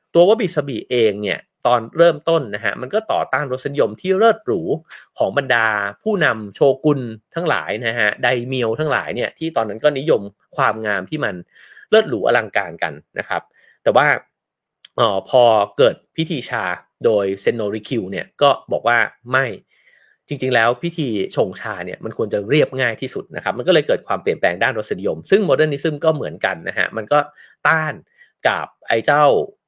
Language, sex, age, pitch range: English, male, 30-49, 120-180 Hz